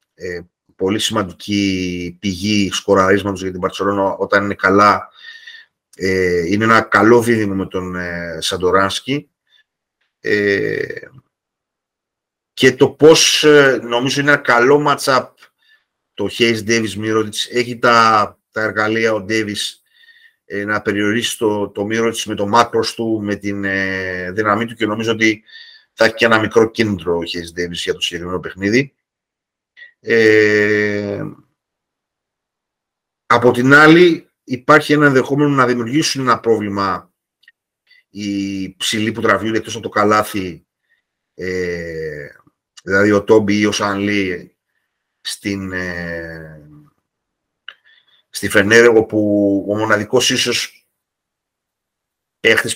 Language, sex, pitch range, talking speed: Greek, male, 95-120 Hz, 105 wpm